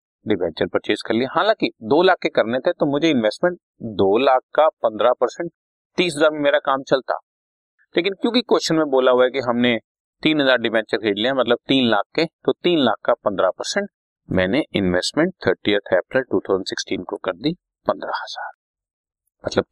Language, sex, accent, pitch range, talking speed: Hindi, male, native, 130-180 Hz, 175 wpm